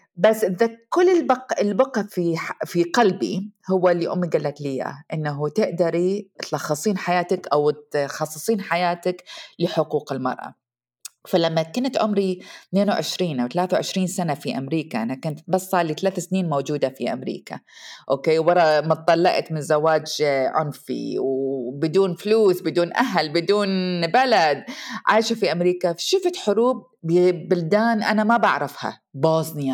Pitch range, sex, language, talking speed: 150-210 Hz, female, Arabic, 125 wpm